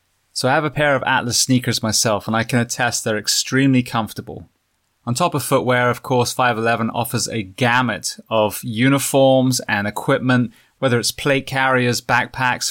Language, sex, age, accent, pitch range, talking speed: English, male, 20-39, British, 110-135 Hz, 165 wpm